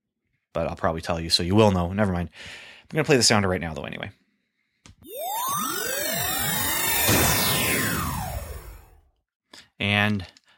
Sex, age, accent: male, 30-49, American